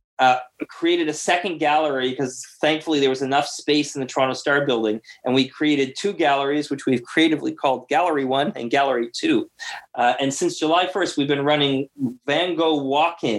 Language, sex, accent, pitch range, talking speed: English, male, American, 125-150 Hz, 185 wpm